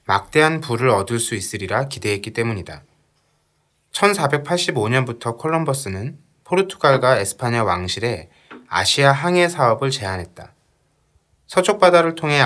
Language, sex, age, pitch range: Korean, male, 20-39, 110-155 Hz